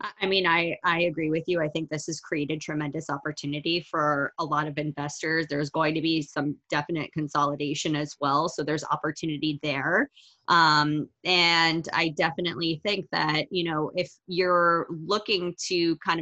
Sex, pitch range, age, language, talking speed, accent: female, 150-180 Hz, 20-39, English, 165 wpm, American